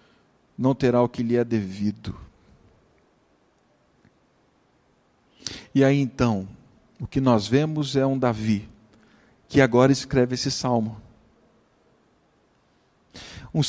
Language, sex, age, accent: Portuguese, male, 50-69, Brazilian